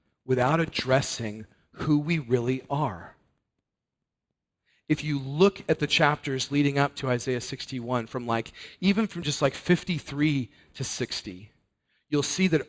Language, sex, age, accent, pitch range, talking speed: English, male, 40-59, American, 120-155 Hz, 135 wpm